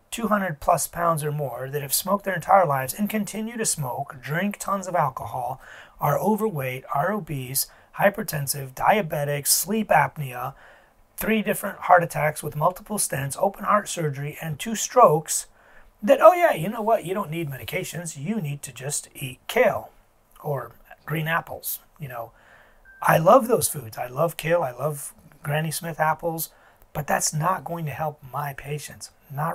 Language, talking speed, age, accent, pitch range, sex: English, 165 wpm, 30-49, American, 145-185 Hz, male